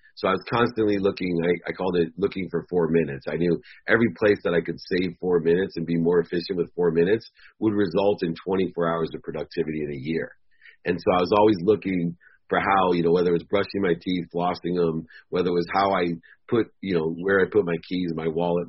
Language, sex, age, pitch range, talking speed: English, male, 40-59, 85-100 Hz, 235 wpm